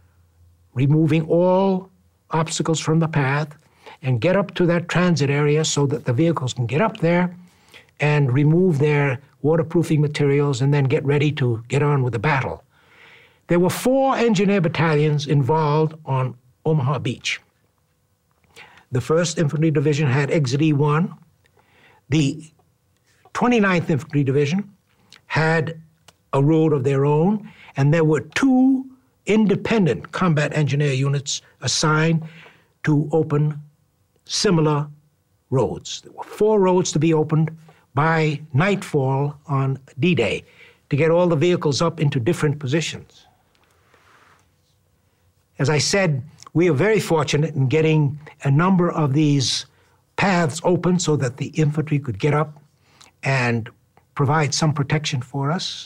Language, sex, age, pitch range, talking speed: English, male, 60-79, 140-165 Hz, 130 wpm